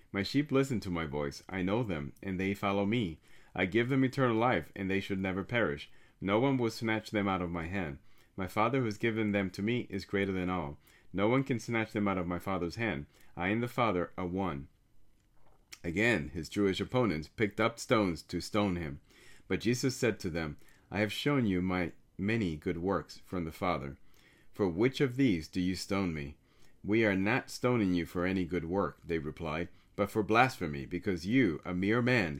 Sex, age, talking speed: male, 30-49, 210 wpm